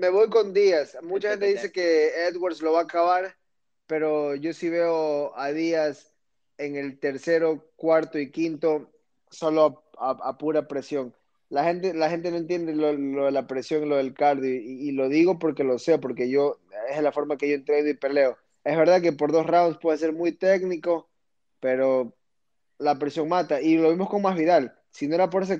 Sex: male